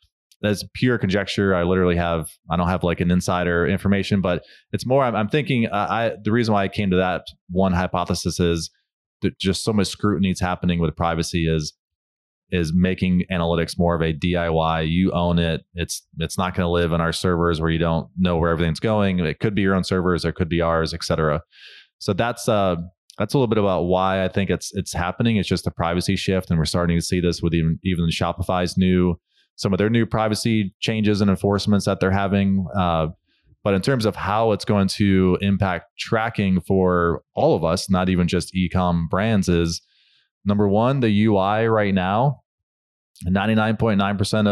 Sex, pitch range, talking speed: male, 85-105 Hz, 200 wpm